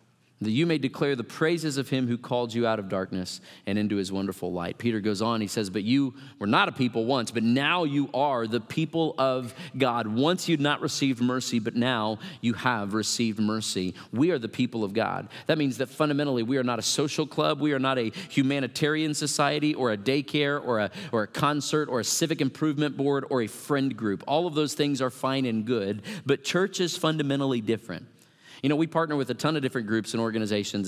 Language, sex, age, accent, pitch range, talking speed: English, male, 40-59, American, 115-150 Hz, 220 wpm